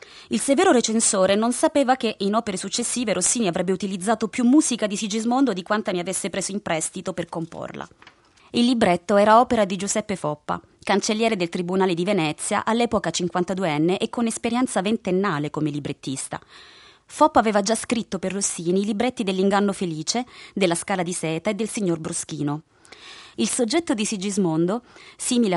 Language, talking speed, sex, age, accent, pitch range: Italian, 160 wpm, female, 20-39, native, 180-235 Hz